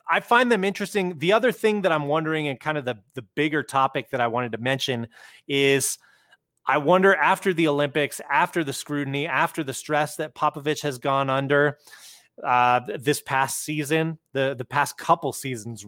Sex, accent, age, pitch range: male, American, 20-39, 130-155 Hz